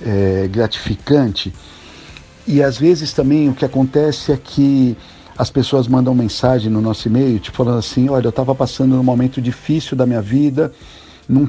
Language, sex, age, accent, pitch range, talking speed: Portuguese, male, 50-69, Brazilian, 100-130 Hz, 170 wpm